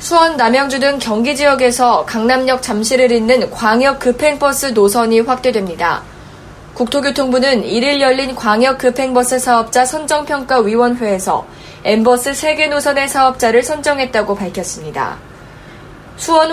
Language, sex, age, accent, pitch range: Korean, female, 20-39, native, 225-275 Hz